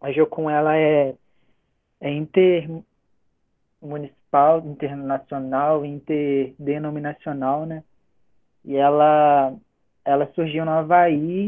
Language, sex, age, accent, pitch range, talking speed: Portuguese, male, 20-39, Brazilian, 140-165 Hz, 80 wpm